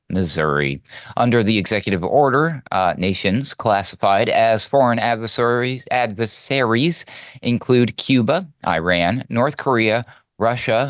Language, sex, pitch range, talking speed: English, male, 105-135 Hz, 100 wpm